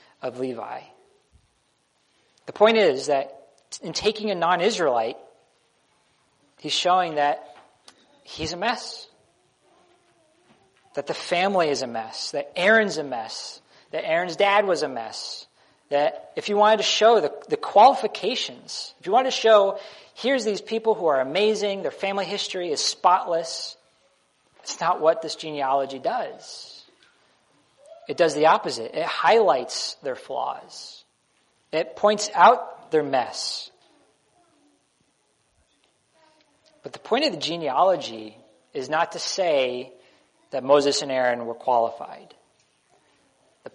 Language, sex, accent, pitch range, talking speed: English, male, American, 140-220 Hz, 130 wpm